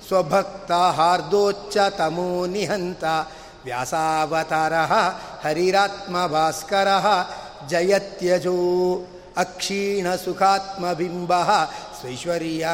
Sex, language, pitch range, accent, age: male, Kannada, 165-195 Hz, native, 50-69